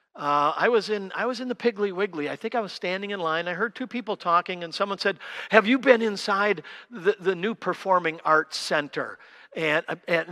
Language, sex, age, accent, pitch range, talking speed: English, male, 50-69, American, 150-200 Hz, 215 wpm